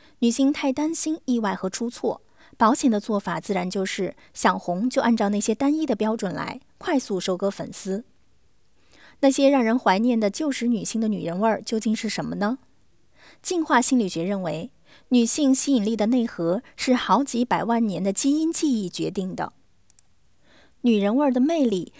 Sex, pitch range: female, 200-270 Hz